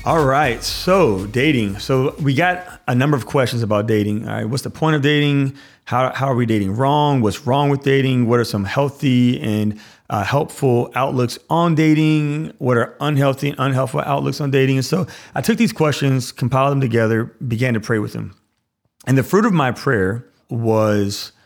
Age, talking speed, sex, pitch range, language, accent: 30-49, 185 wpm, male, 110-140 Hz, English, American